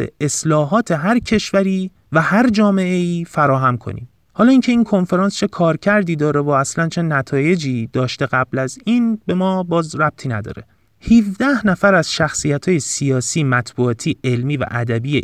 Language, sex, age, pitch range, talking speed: Persian, male, 30-49, 125-180 Hz, 160 wpm